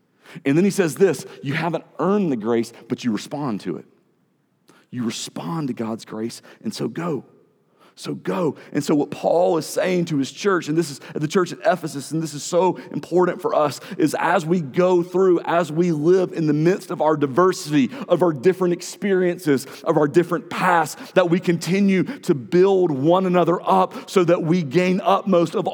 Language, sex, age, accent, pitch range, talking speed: English, male, 40-59, American, 105-180 Hz, 200 wpm